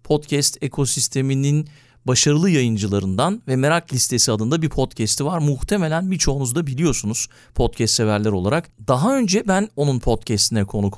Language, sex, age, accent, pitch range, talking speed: Turkish, male, 40-59, native, 120-155 Hz, 130 wpm